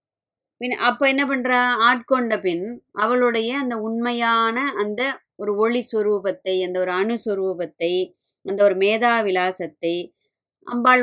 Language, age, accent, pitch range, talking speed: Tamil, 20-39, native, 190-230 Hz, 110 wpm